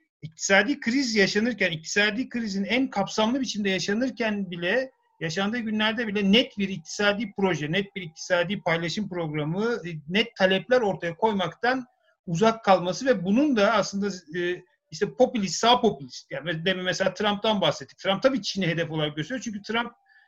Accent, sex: native, male